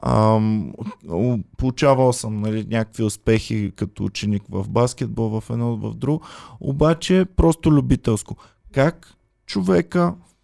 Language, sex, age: Bulgarian, male, 20-39